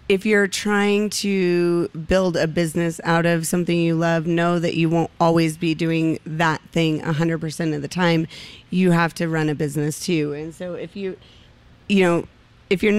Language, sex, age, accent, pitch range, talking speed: English, female, 30-49, American, 175-195 Hz, 185 wpm